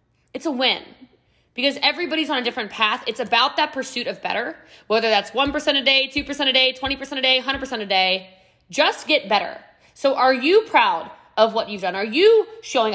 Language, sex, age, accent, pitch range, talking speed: English, female, 20-39, American, 215-300 Hz, 200 wpm